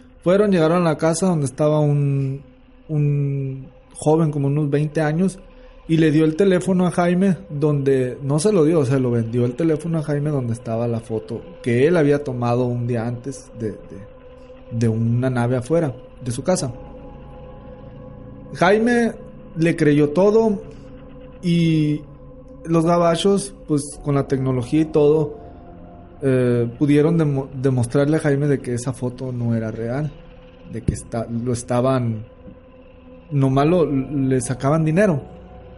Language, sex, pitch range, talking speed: Spanish, male, 125-165 Hz, 150 wpm